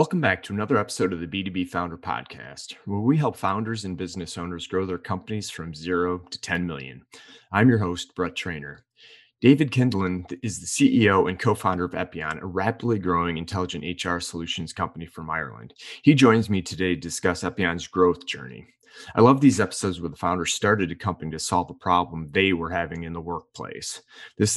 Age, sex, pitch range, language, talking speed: 30-49, male, 85-100 Hz, English, 190 wpm